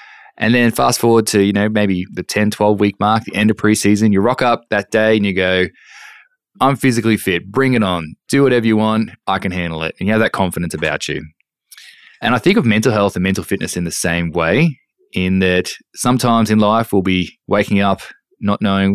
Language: English